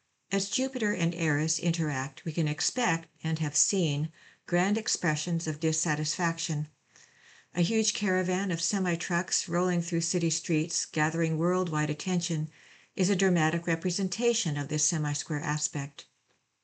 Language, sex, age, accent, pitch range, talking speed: English, female, 60-79, American, 155-190 Hz, 125 wpm